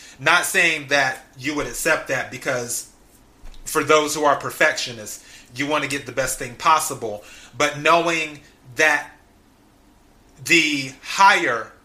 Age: 30-49